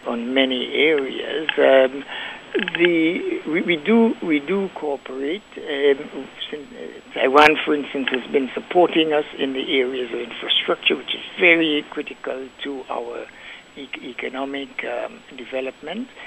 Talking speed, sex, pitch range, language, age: 135 wpm, male, 130-175 Hz, English, 60-79